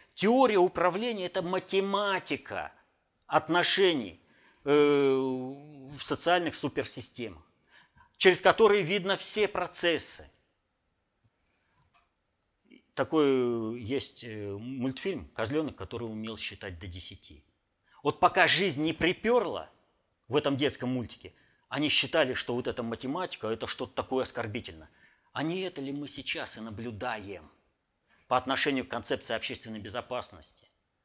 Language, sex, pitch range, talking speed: Russian, male, 120-185 Hz, 110 wpm